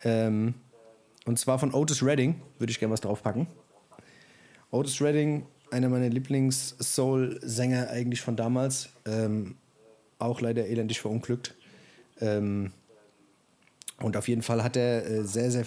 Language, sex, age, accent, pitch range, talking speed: German, male, 30-49, German, 105-125 Hz, 130 wpm